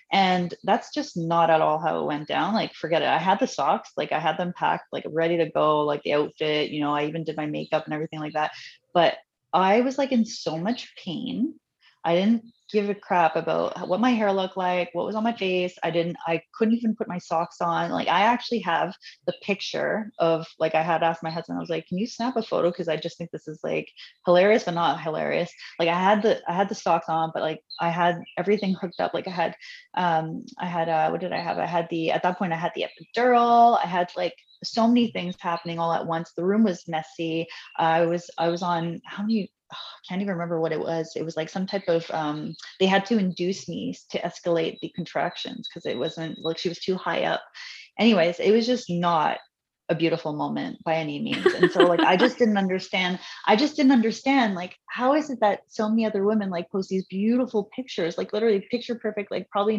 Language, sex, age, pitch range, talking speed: English, female, 20-39, 165-215 Hz, 240 wpm